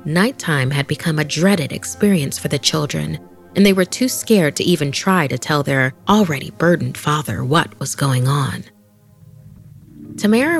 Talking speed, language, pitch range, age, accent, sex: 160 wpm, English, 135-170 Hz, 30-49, American, female